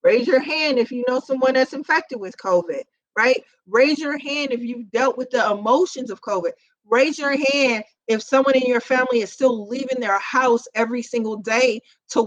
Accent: American